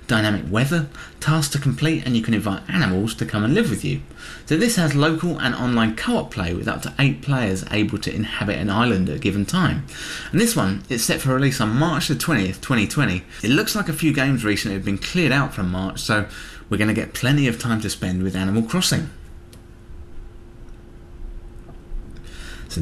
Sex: male